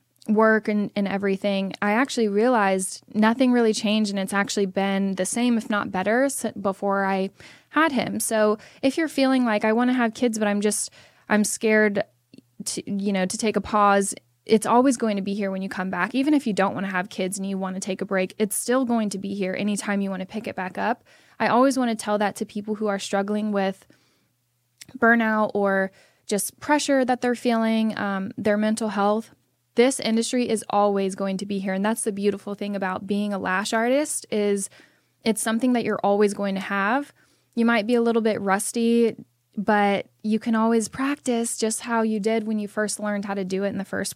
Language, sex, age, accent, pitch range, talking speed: English, female, 10-29, American, 195-225 Hz, 220 wpm